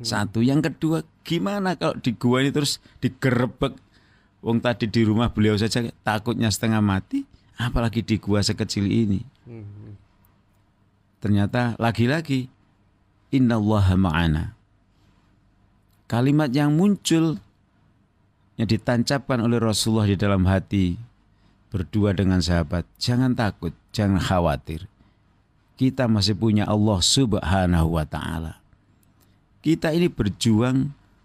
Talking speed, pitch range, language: 105 wpm, 100-130 Hz, Indonesian